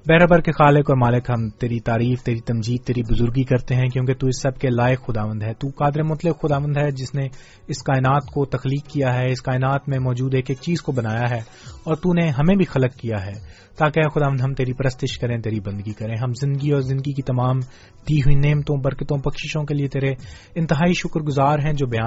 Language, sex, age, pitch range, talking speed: English, male, 30-49, 120-150 Hz, 205 wpm